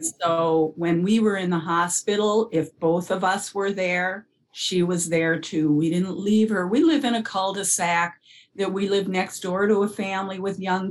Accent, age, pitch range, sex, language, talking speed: American, 50-69, 165-205 Hz, female, English, 200 wpm